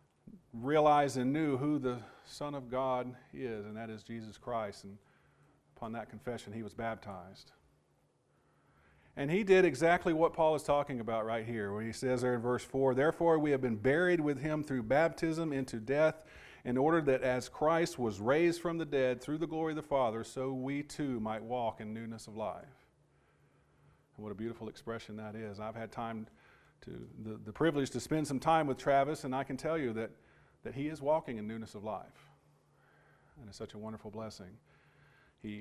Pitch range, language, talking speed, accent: 110-140 Hz, English, 195 wpm, American